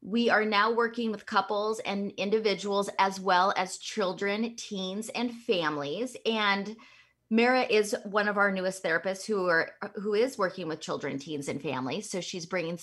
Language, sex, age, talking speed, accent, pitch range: English, female, 20-39, 170 wpm, American, 175-225 Hz